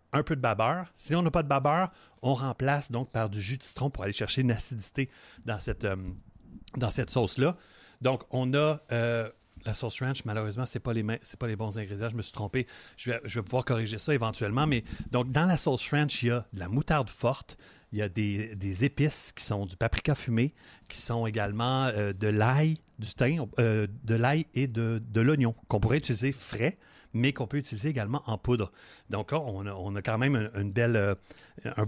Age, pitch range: 30-49, 105-135 Hz